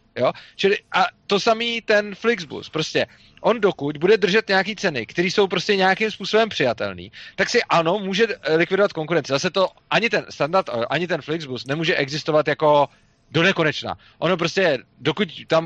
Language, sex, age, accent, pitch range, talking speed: Czech, male, 30-49, native, 145-190 Hz, 165 wpm